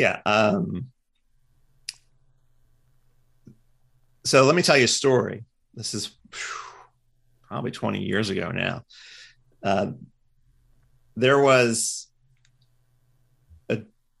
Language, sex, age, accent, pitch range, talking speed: English, male, 40-59, American, 115-130 Hz, 90 wpm